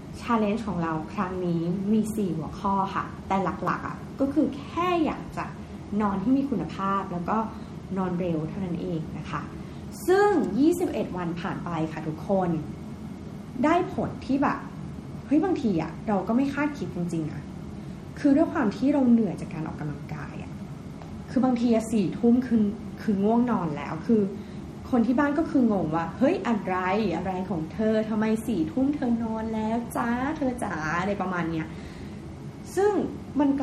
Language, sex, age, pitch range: Thai, female, 20-39, 180-265 Hz